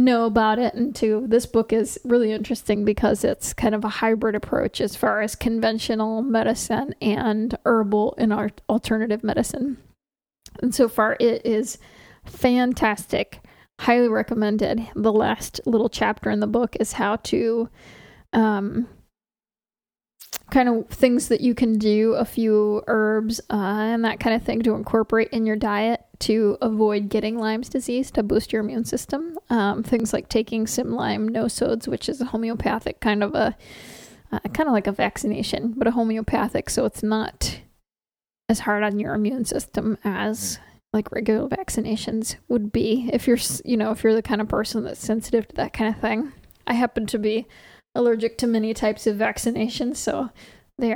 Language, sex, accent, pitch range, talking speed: English, female, American, 215-235 Hz, 170 wpm